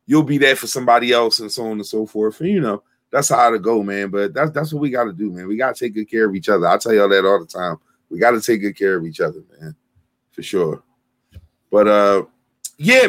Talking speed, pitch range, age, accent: 260 wpm, 105-130 Hz, 30-49, American